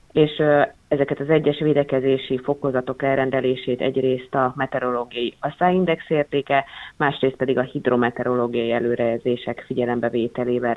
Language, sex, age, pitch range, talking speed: Hungarian, female, 30-49, 125-145 Hz, 100 wpm